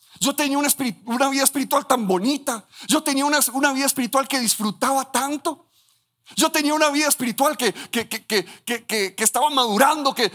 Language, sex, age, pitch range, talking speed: Spanish, male, 50-69, 190-275 Hz, 155 wpm